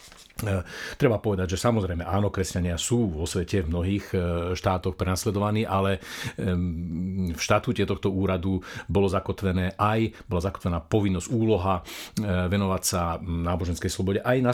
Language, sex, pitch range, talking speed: Slovak, male, 85-100 Hz, 130 wpm